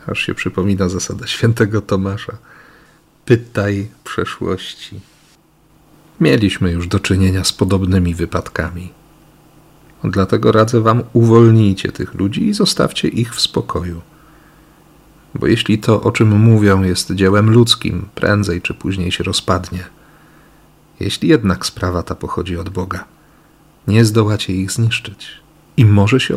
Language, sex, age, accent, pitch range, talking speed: Polish, male, 40-59, native, 95-125 Hz, 125 wpm